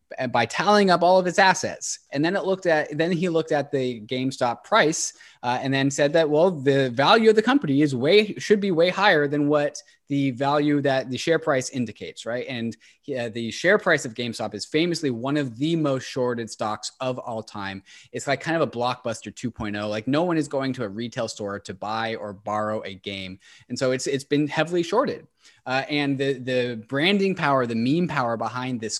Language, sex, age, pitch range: English, male, 20-39, 120-160 Hz